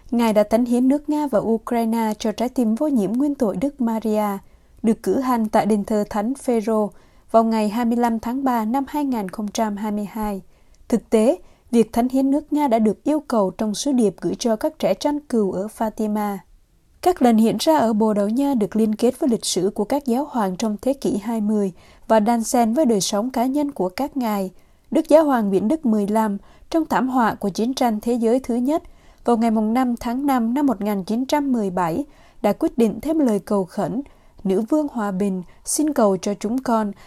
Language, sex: Vietnamese, female